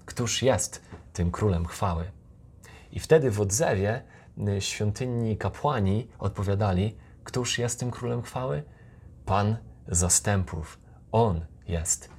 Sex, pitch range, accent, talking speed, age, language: male, 90-105 Hz, native, 105 wpm, 30-49, Polish